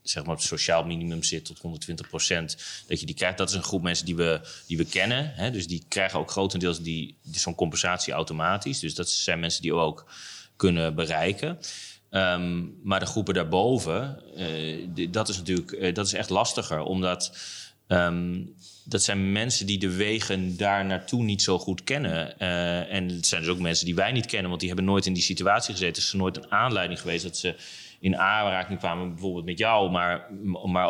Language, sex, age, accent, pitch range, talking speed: Dutch, male, 30-49, Dutch, 90-100 Hz, 185 wpm